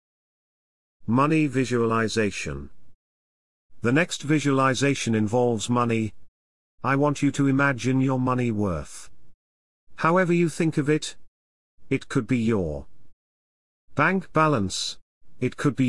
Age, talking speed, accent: 40-59, 110 wpm, British